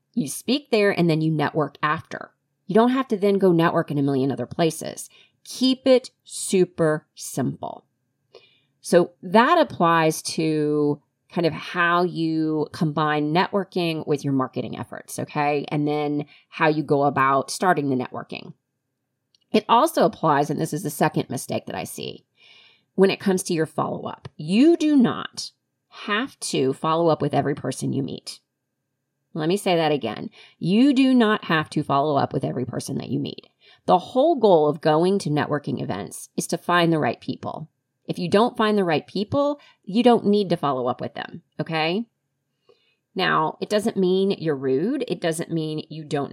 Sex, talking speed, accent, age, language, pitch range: female, 175 wpm, American, 30-49, English, 145-195 Hz